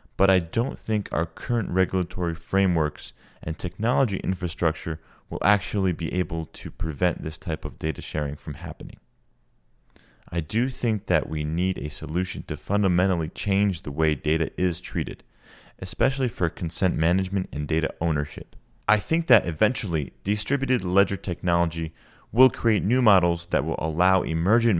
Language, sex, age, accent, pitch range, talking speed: English, male, 30-49, American, 80-100 Hz, 150 wpm